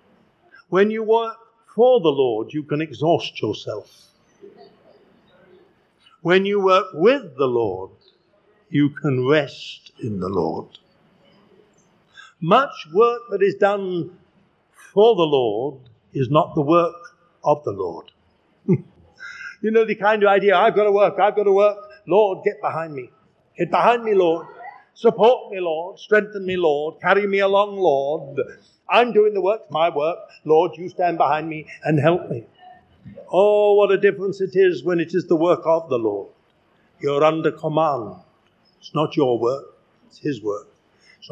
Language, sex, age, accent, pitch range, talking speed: English, male, 60-79, British, 160-215 Hz, 155 wpm